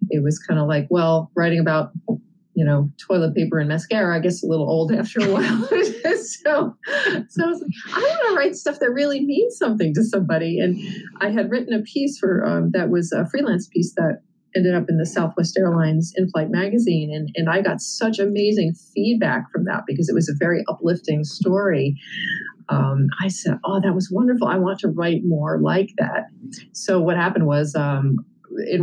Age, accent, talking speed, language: 40-59, American, 200 wpm, English